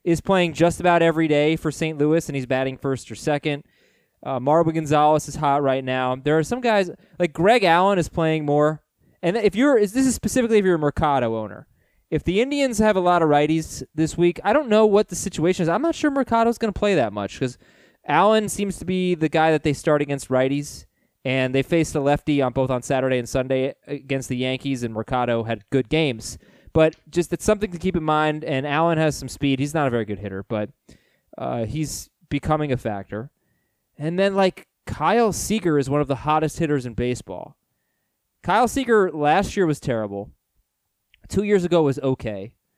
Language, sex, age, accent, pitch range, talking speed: English, male, 20-39, American, 130-180 Hz, 210 wpm